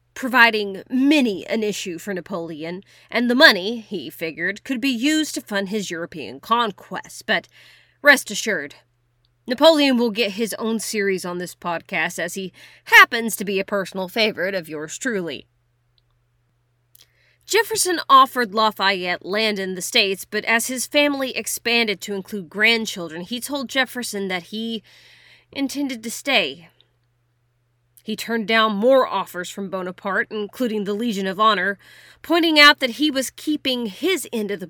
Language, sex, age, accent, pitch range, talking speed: English, female, 30-49, American, 165-245 Hz, 150 wpm